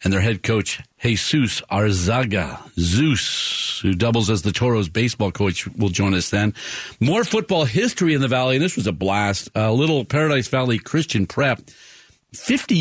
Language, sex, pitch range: English, male, 105-135 Hz